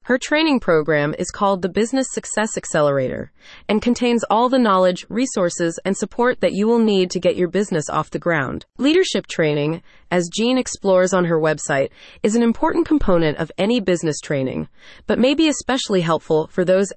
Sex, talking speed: female, 180 wpm